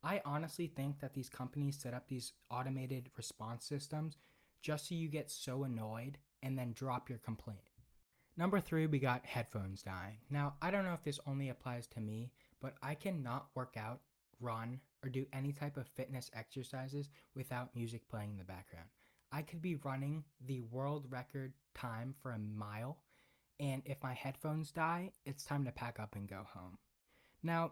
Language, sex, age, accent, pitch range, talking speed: English, male, 20-39, American, 120-150 Hz, 180 wpm